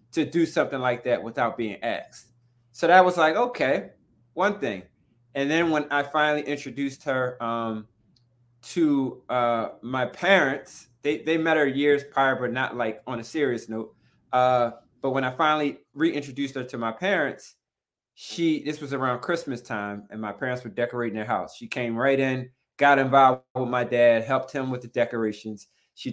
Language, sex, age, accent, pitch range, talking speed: English, male, 20-39, American, 120-145 Hz, 180 wpm